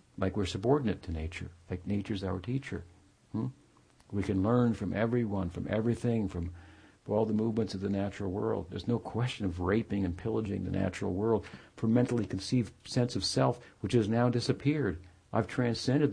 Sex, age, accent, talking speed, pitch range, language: male, 60-79, American, 175 wpm, 95-125 Hz, English